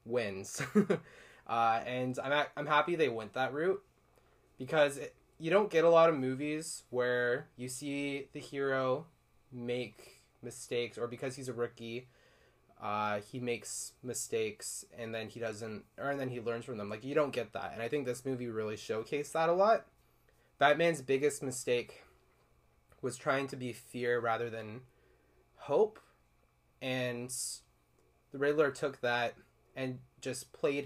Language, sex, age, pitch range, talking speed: English, male, 20-39, 115-140 Hz, 155 wpm